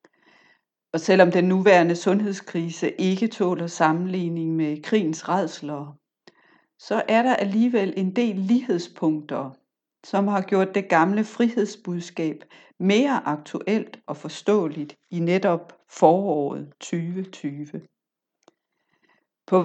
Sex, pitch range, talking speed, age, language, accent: female, 165-210 Hz, 100 wpm, 60-79, Danish, native